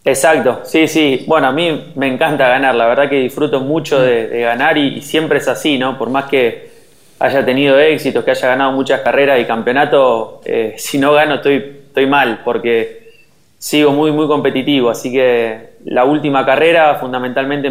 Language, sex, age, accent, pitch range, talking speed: Spanish, male, 20-39, Argentinian, 130-155 Hz, 180 wpm